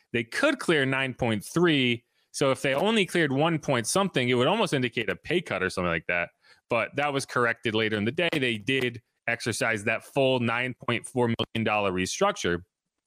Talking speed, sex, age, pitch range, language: 180 wpm, male, 30-49, 115-160 Hz, English